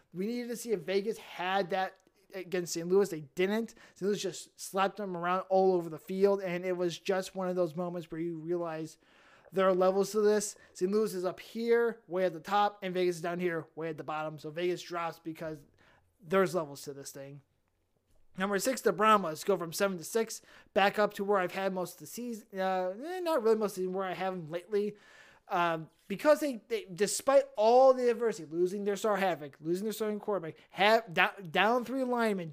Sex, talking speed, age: male, 220 wpm, 20-39